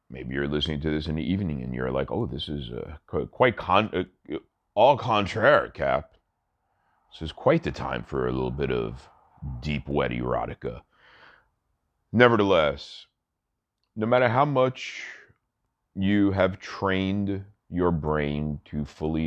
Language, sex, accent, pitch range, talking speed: English, male, American, 75-110 Hz, 140 wpm